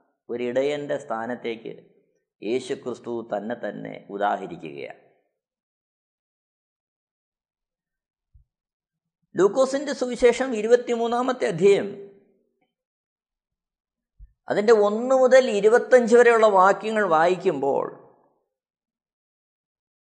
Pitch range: 195-245 Hz